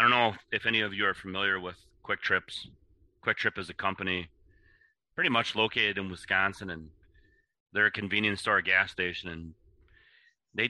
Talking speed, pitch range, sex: 180 wpm, 90-110 Hz, male